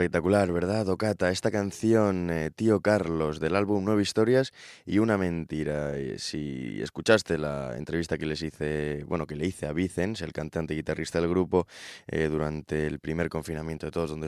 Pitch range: 75-90 Hz